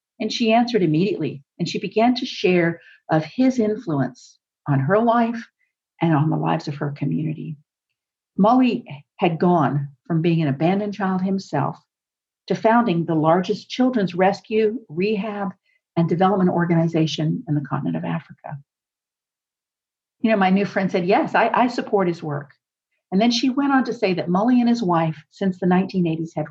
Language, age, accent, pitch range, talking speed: English, 50-69, American, 165-210 Hz, 165 wpm